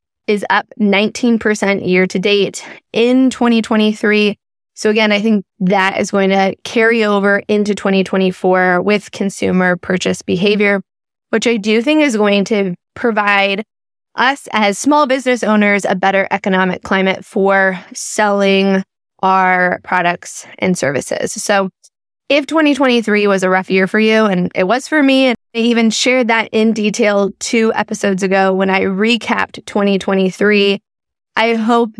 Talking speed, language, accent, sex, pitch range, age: 145 wpm, English, American, female, 190-220 Hz, 20-39